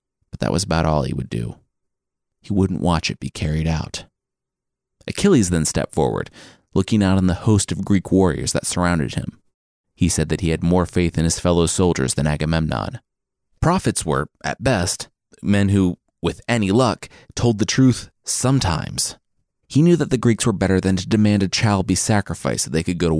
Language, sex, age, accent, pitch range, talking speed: English, male, 30-49, American, 85-120 Hz, 190 wpm